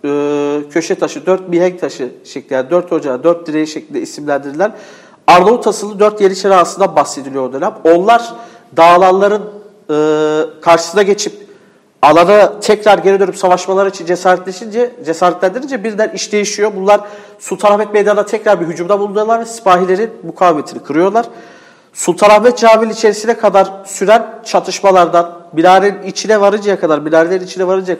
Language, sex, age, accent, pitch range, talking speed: English, male, 50-69, Turkish, 155-205 Hz, 130 wpm